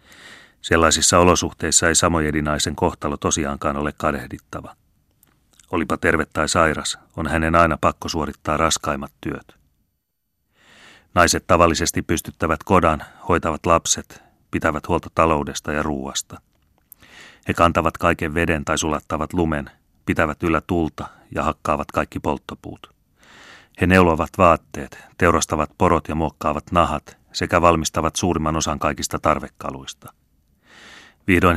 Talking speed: 110 wpm